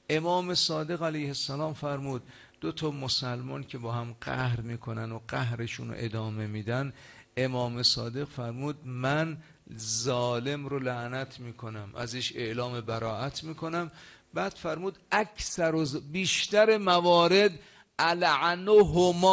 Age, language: 50-69, Persian